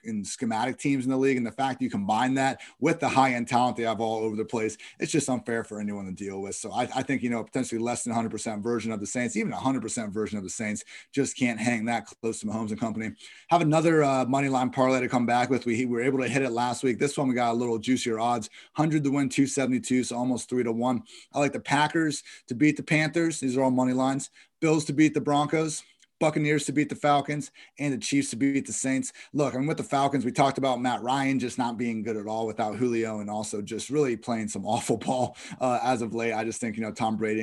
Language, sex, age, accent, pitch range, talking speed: English, male, 30-49, American, 115-140 Hz, 265 wpm